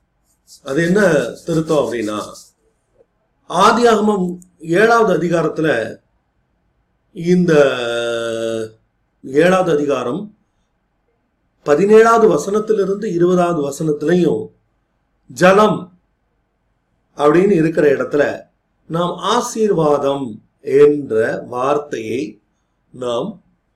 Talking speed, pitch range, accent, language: 60 wpm, 145-185 Hz, native, Tamil